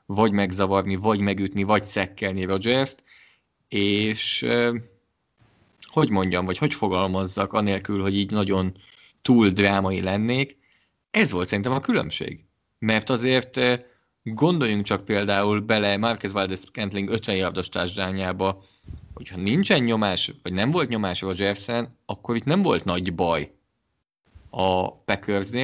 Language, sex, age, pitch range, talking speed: English, male, 20-39, 95-115 Hz, 120 wpm